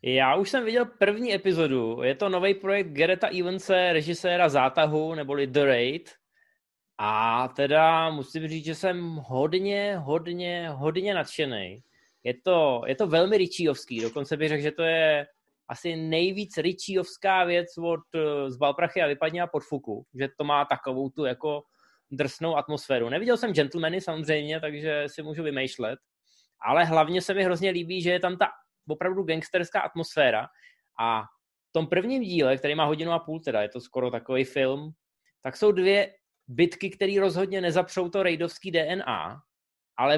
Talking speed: 160 wpm